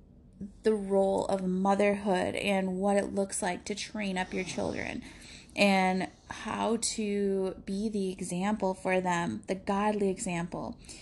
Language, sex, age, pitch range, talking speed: English, female, 20-39, 195-245 Hz, 135 wpm